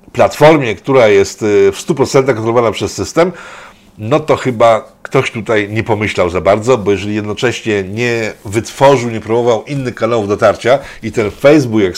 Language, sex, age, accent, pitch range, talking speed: Polish, male, 50-69, native, 105-145 Hz, 155 wpm